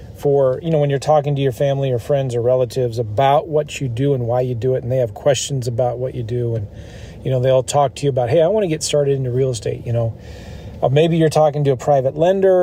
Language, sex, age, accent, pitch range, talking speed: English, male, 40-59, American, 120-150 Hz, 270 wpm